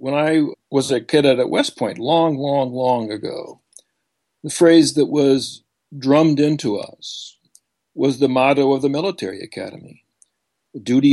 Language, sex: English, male